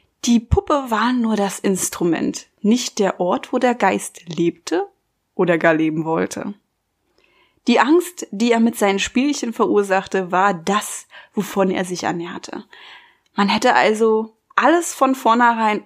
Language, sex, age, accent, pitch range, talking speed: German, female, 20-39, German, 200-280 Hz, 140 wpm